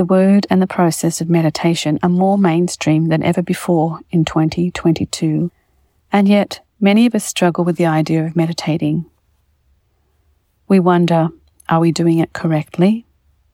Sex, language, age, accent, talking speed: female, English, 40-59, Australian, 145 wpm